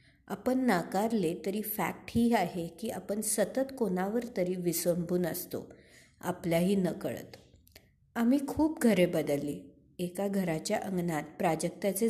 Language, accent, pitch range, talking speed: Marathi, native, 175-215 Hz, 115 wpm